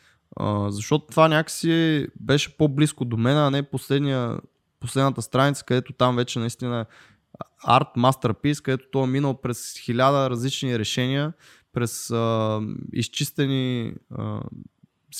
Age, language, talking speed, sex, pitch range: 20-39, Bulgarian, 120 wpm, male, 115-140 Hz